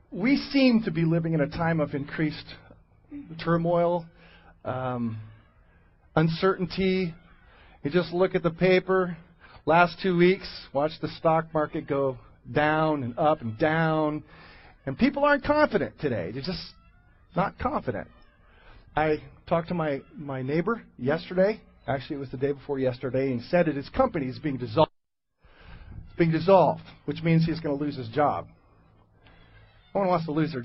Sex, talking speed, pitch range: male, 160 wpm, 130-170 Hz